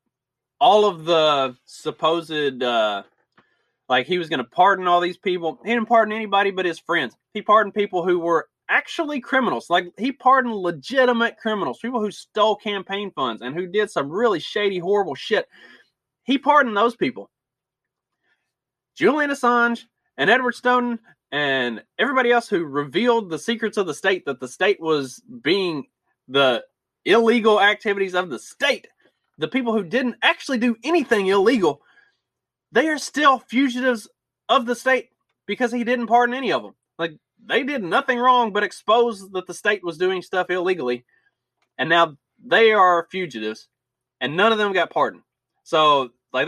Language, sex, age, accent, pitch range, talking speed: English, male, 30-49, American, 155-240 Hz, 160 wpm